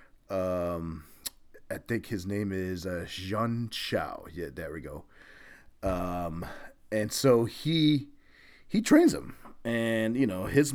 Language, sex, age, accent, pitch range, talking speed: English, male, 30-49, American, 100-125 Hz, 135 wpm